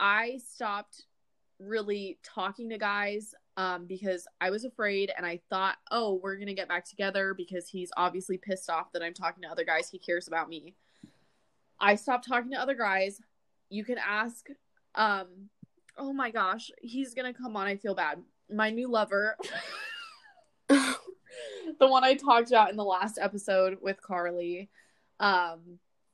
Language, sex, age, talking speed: English, female, 20-39, 165 wpm